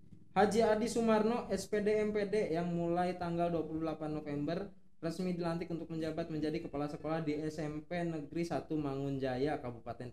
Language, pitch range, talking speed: Indonesian, 120-170 Hz, 135 wpm